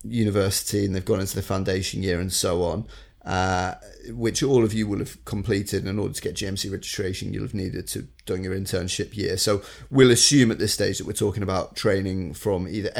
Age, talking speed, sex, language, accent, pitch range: 30-49, 210 wpm, male, English, British, 95-110 Hz